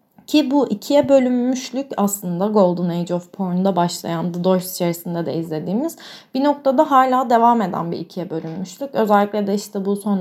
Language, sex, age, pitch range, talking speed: Turkish, female, 30-49, 180-225 Hz, 165 wpm